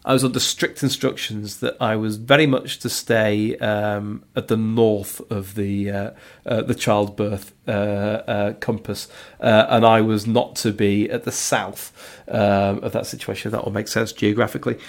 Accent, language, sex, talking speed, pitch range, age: British, English, male, 175 wpm, 105-125 Hz, 40-59